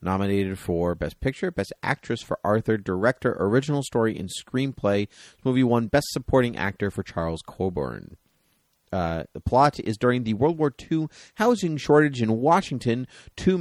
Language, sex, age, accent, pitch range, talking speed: English, male, 30-49, American, 100-140 Hz, 160 wpm